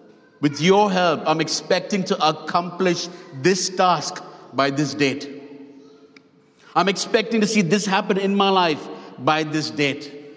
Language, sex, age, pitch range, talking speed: English, male, 50-69, 175-220 Hz, 140 wpm